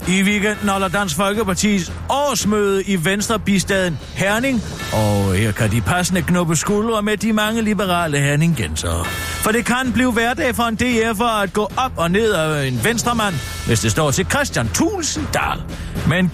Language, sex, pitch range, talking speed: Danish, male, 130-205 Hz, 160 wpm